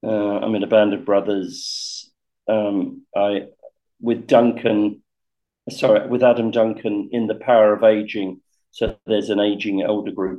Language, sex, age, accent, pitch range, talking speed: English, male, 50-69, British, 110-145 Hz, 150 wpm